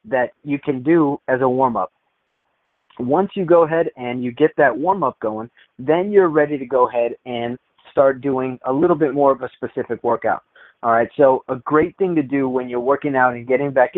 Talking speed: 210 wpm